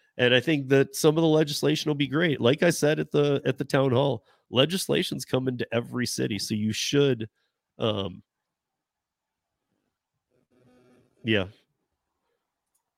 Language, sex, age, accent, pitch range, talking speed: English, male, 30-49, American, 115-140 Hz, 140 wpm